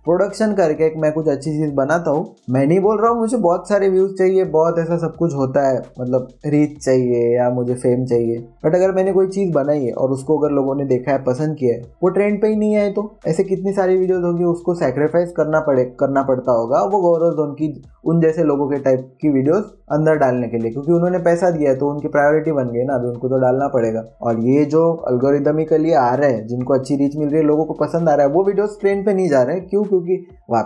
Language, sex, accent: Hindi, male, native